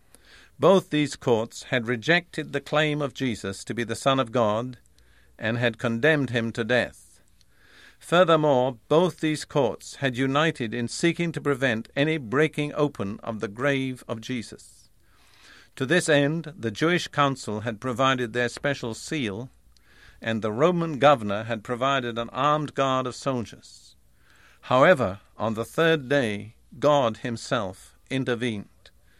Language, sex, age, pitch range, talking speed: English, male, 50-69, 115-145 Hz, 140 wpm